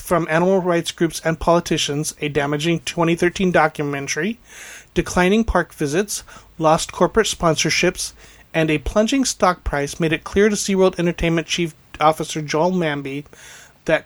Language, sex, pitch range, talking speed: English, male, 155-185 Hz, 135 wpm